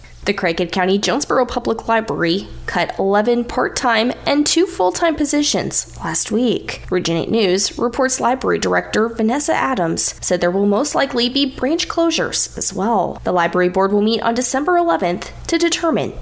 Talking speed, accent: 155 wpm, American